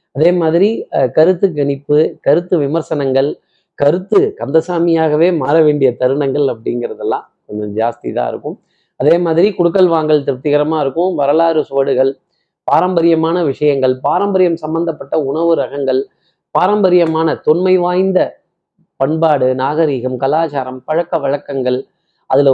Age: 30-49